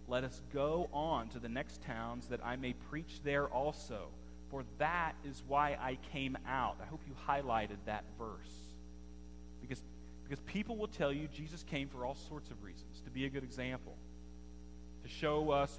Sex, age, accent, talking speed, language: male, 40-59, American, 180 wpm, English